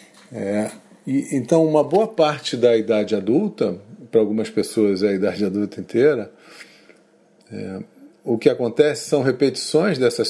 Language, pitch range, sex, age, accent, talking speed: Portuguese, 100-130 Hz, male, 40-59, Brazilian, 140 wpm